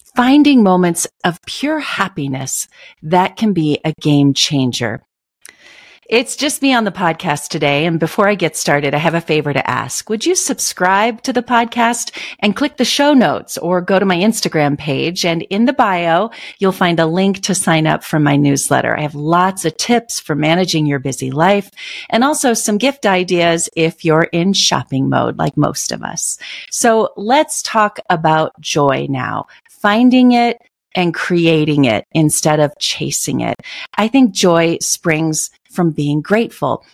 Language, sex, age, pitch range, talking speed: English, female, 40-59, 155-220 Hz, 170 wpm